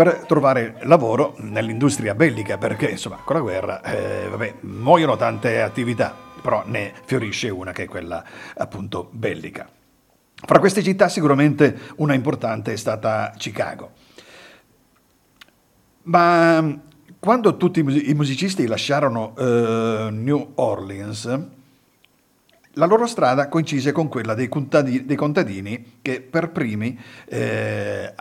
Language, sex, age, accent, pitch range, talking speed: Italian, male, 50-69, native, 115-160 Hz, 120 wpm